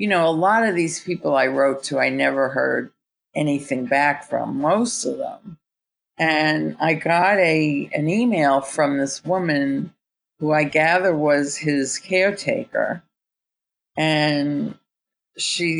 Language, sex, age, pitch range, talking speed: English, female, 50-69, 140-175 Hz, 135 wpm